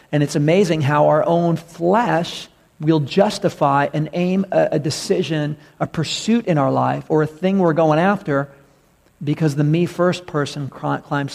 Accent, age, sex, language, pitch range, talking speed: American, 50-69, male, English, 145-175 Hz, 165 wpm